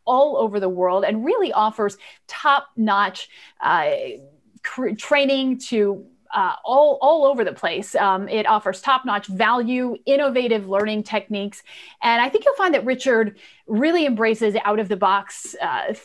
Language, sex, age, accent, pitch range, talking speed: English, female, 30-49, American, 200-255 Hz, 135 wpm